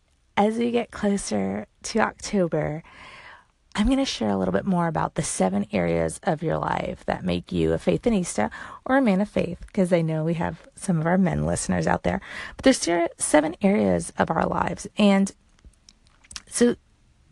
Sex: female